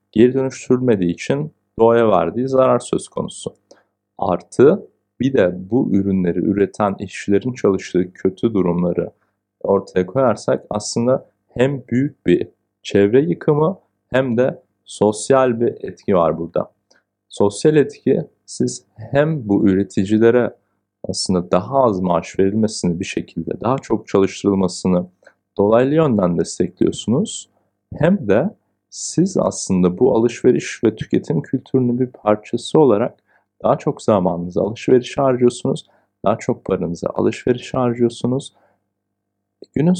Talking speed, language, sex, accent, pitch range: 115 wpm, Turkish, male, native, 95-120 Hz